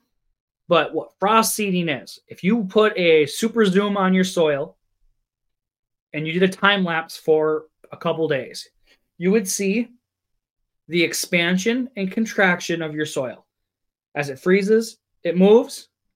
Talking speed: 145 wpm